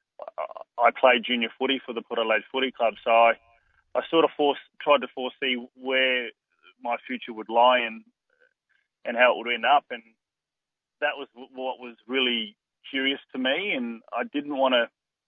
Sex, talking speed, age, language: male, 175 wpm, 30-49, English